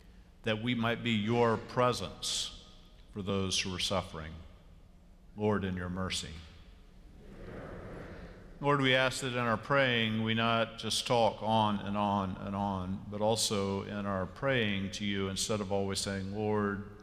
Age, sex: 50-69, male